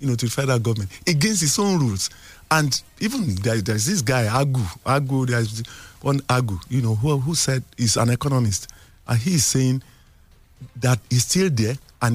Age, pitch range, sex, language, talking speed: 50-69, 115-155 Hz, male, English, 185 wpm